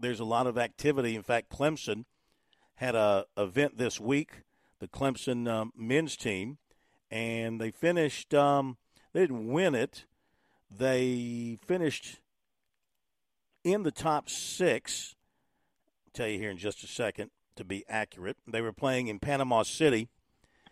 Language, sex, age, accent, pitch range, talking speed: English, male, 50-69, American, 110-145 Hz, 145 wpm